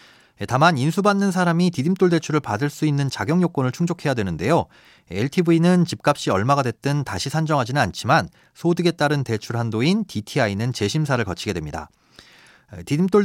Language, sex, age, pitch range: Korean, male, 40-59, 110-160 Hz